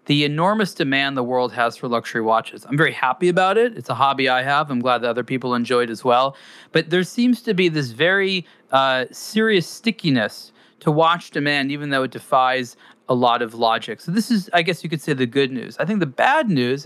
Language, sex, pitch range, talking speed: English, male, 130-175 Hz, 230 wpm